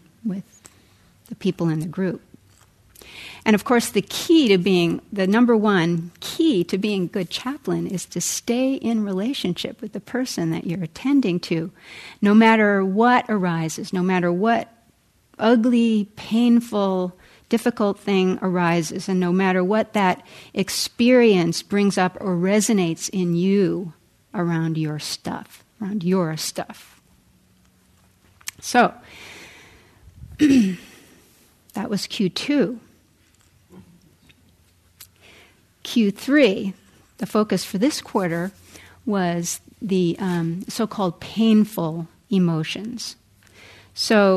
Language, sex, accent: English, female, American